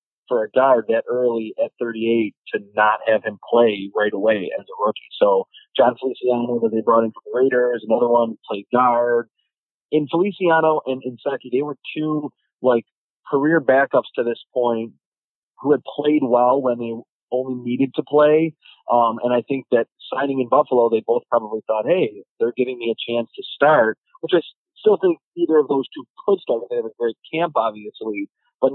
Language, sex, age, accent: English, male, 30-49, American